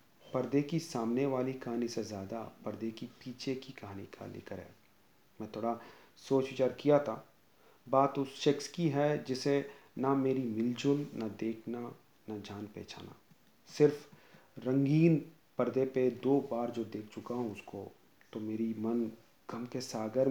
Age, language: 40-59, Hindi